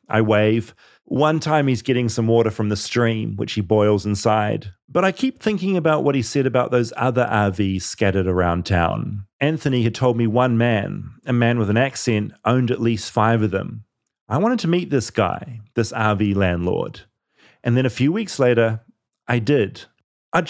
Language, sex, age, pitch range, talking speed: English, male, 30-49, 110-145 Hz, 190 wpm